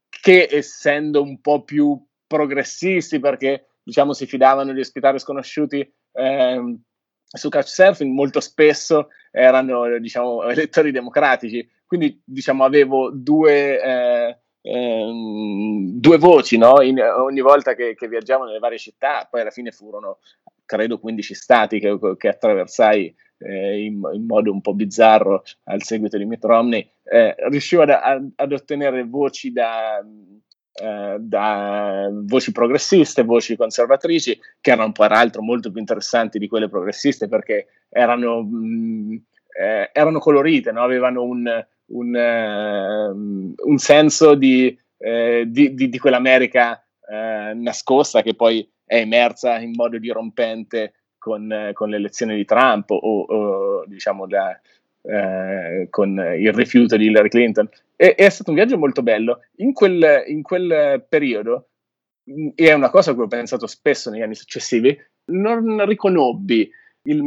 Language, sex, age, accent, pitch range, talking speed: Italian, male, 20-39, native, 110-150 Hz, 135 wpm